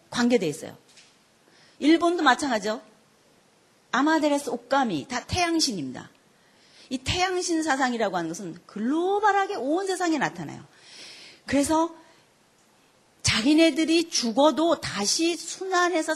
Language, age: Korean, 40-59